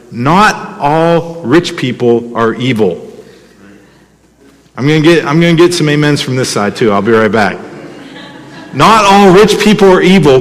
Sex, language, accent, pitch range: male, English, American, 115-170 Hz